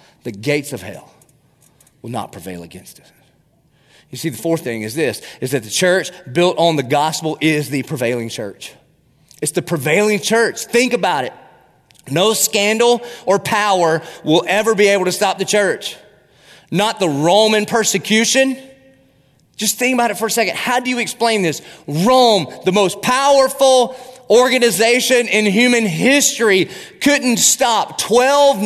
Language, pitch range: English, 150-215 Hz